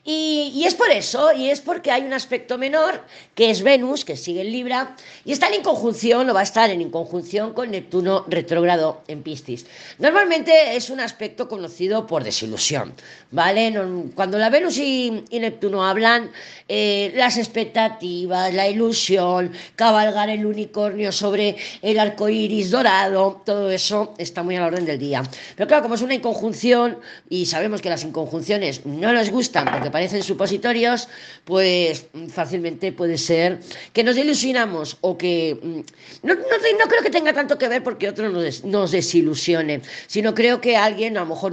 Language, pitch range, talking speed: Spanish, 175-240 Hz, 170 wpm